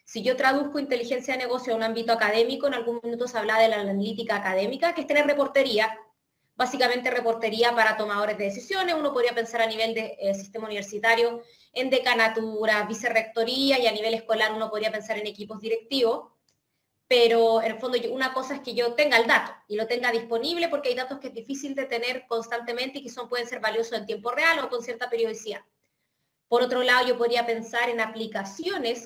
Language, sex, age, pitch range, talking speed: Spanish, female, 20-39, 225-260 Hz, 200 wpm